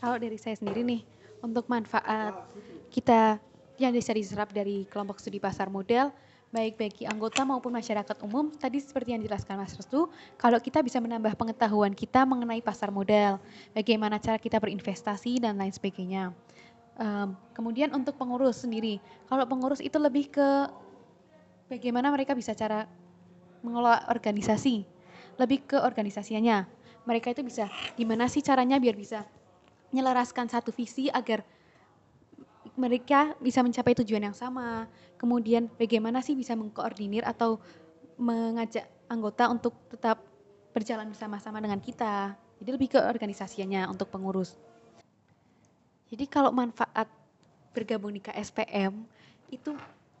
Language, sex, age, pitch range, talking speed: Indonesian, female, 20-39, 210-245 Hz, 130 wpm